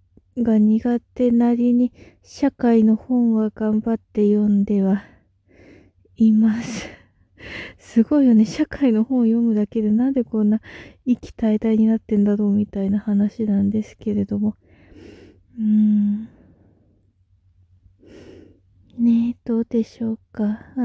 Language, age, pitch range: Japanese, 20-39, 205-235 Hz